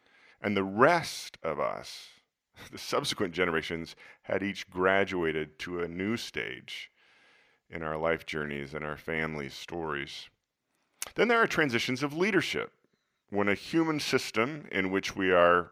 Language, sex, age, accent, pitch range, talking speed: English, male, 40-59, American, 90-120 Hz, 140 wpm